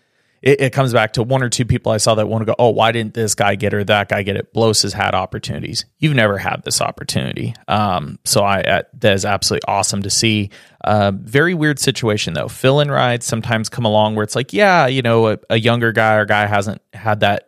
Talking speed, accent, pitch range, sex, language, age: 245 wpm, American, 105-120 Hz, male, English, 30-49